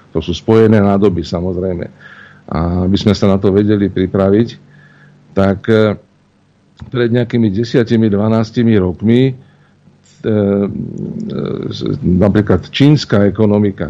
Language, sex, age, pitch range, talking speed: Slovak, male, 50-69, 95-120 Hz, 95 wpm